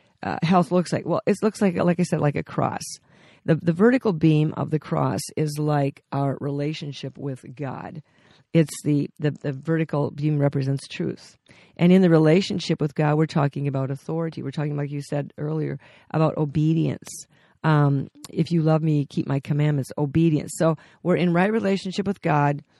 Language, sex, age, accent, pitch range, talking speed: English, female, 50-69, American, 145-165 Hz, 180 wpm